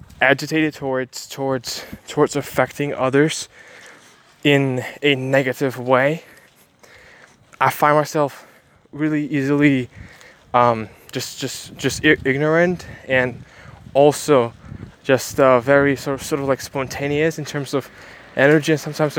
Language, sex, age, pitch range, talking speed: English, male, 20-39, 130-155 Hz, 120 wpm